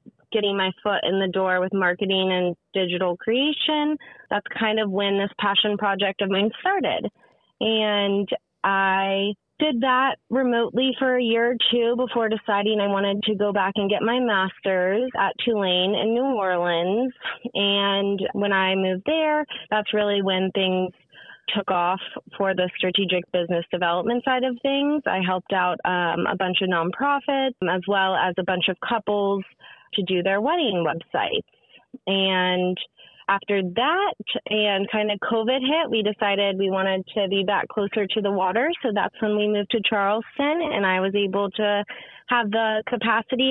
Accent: American